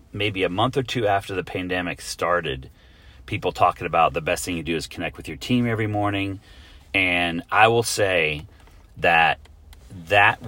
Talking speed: 170 wpm